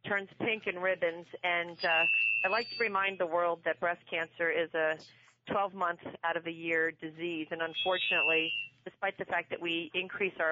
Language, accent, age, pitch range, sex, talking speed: English, American, 40-59, 155-180 Hz, female, 190 wpm